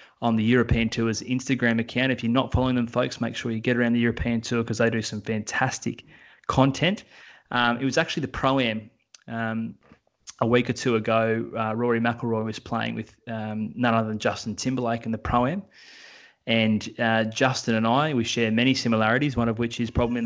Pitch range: 110-125 Hz